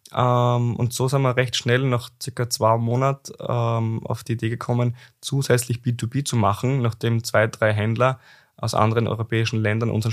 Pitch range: 110-130 Hz